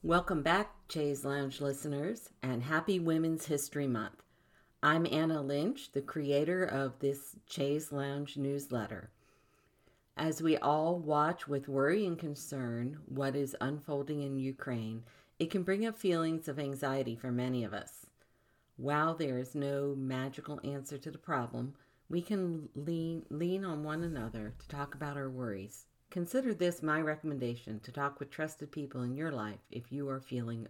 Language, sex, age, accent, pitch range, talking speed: English, female, 50-69, American, 125-155 Hz, 160 wpm